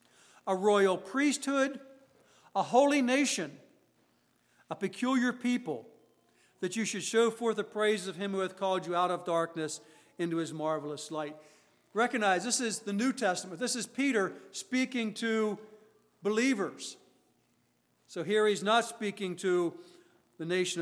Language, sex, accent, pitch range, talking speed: English, male, American, 165-205 Hz, 140 wpm